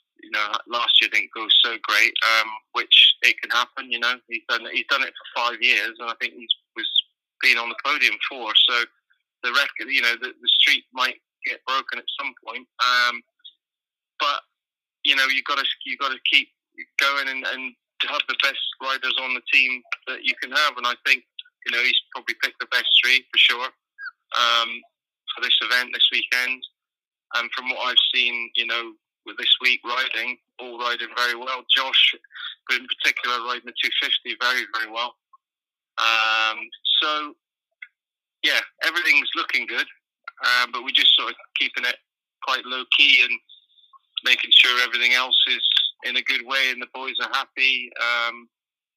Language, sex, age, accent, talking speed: English, male, 30-49, British, 185 wpm